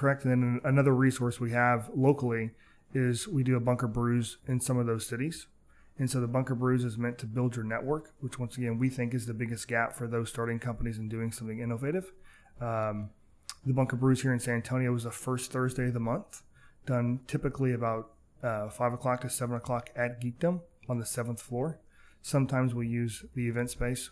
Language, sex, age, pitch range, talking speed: English, male, 20-39, 115-125 Hz, 205 wpm